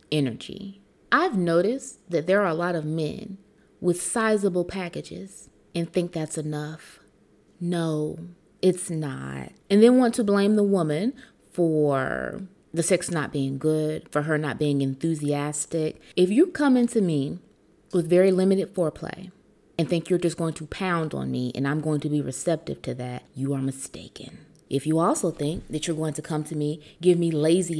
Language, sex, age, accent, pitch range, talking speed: English, female, 30-49, American, 150-200 Hz, 175 wpm